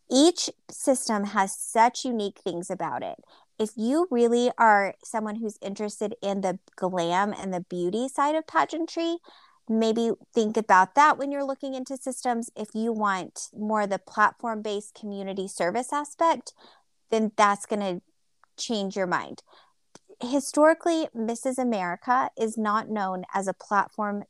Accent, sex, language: American, female, English